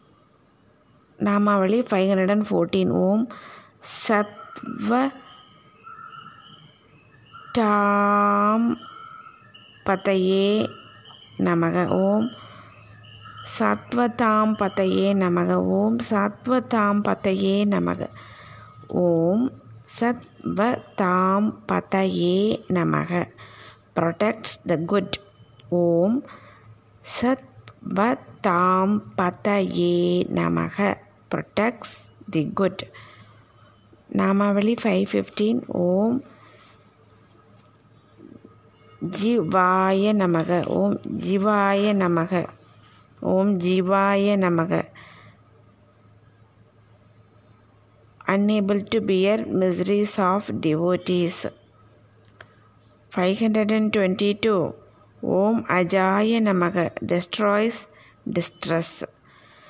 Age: 20-39